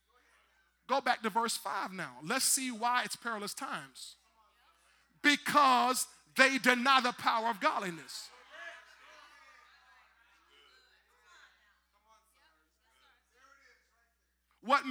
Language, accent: English, American